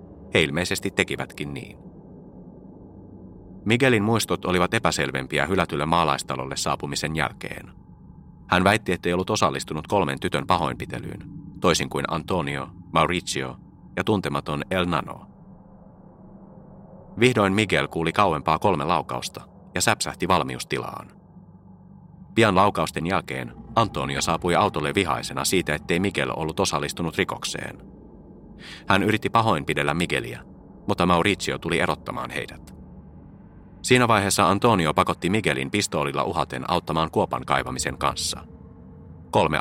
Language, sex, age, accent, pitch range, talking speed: Finnish, male, 30-49, native, 80-100 Hz, 110 wpm